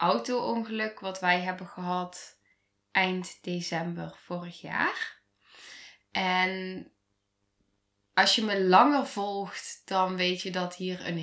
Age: 10-29